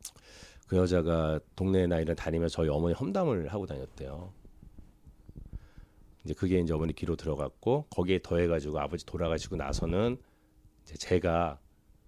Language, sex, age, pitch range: Korean, male, 40-59, 75-95 Hz